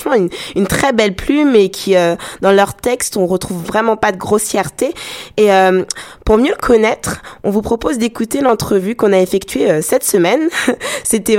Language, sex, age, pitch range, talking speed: French, female, 20-39, 185-225 Hz, 185 wpm